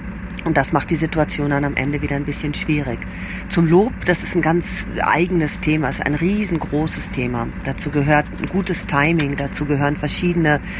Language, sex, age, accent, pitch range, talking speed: German, female, 40-59, German, 155-190 Hz, 180 wpm